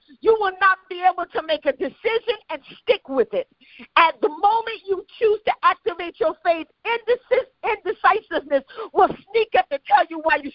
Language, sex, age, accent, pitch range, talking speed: English, female, 40-59, American, 325-420 Hz, 175 wpm